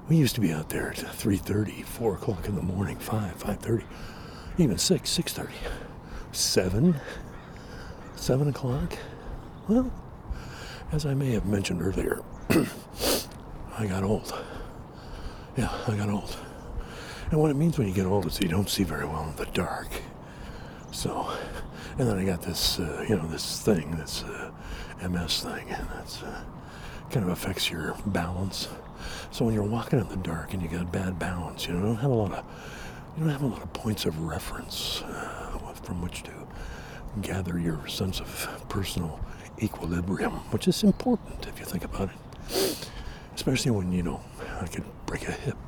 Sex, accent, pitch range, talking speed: male, American, 90-120 Hz, 170 wpm